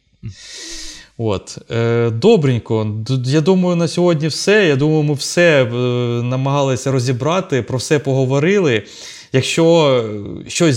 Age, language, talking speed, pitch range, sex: 20-39, Ukrainian, 110 wpm, 120-155 Hz, male